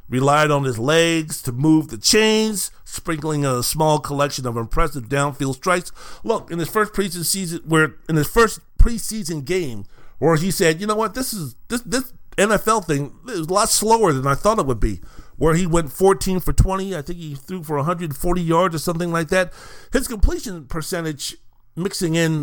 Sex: male